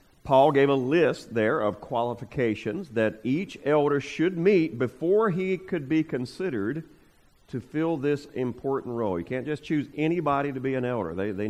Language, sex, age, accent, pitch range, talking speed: English, male, 40-59, American, 110-145 Hz, 170 wpm